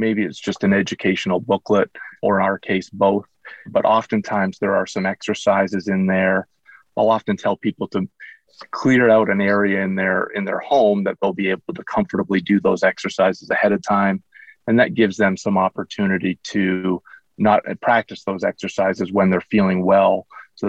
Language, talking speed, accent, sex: English, 175 wpm, American, male